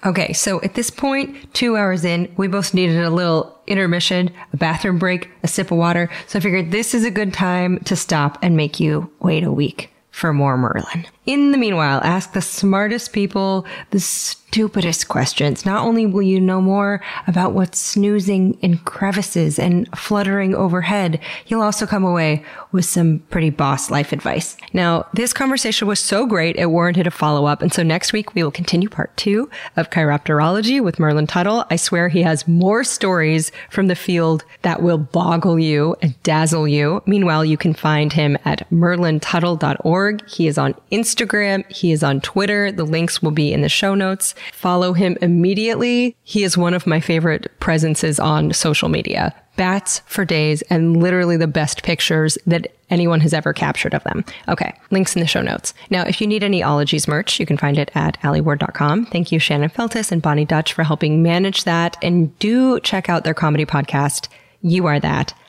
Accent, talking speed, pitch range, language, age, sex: American, 190 wpm, 160-195 Hz, English, 30-49, female